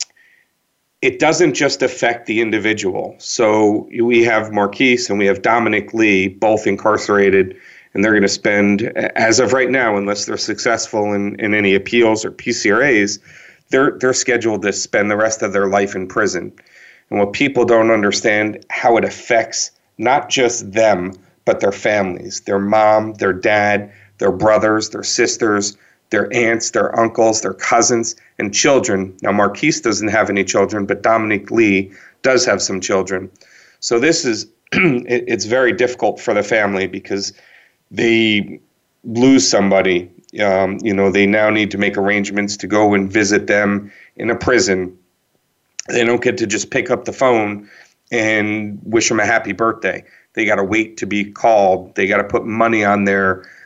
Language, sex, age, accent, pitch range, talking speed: English, male, 40-59, American, 100-115 Hz, 165 wpm